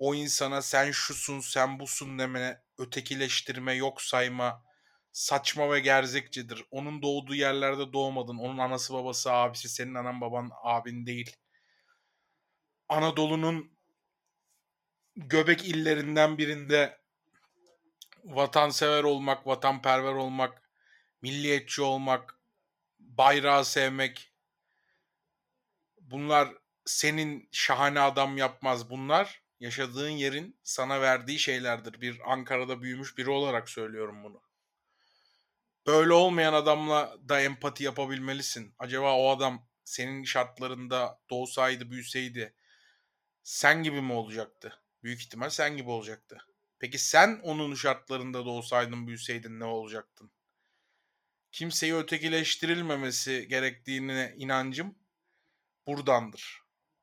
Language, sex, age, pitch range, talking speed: Turkish, male, 30-49, 125-145 Hz, 95 wpm